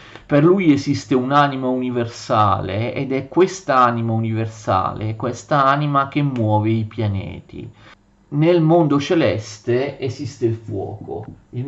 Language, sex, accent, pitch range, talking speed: Italian, male, native, 110-145 Hz, 115 wpm